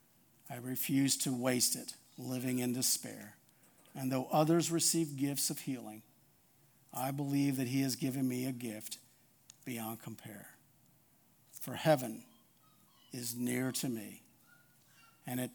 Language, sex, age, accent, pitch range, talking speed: English, male, 50-69, American, 120-145 Hz, 130 wpm